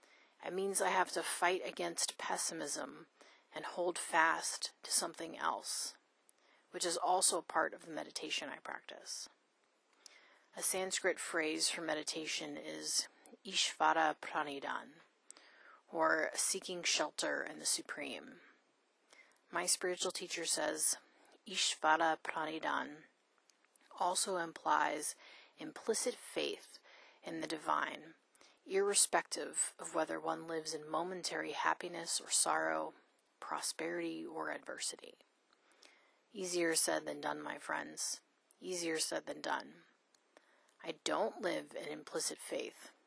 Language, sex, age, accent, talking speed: English, female, 30-49, American, 110 wpm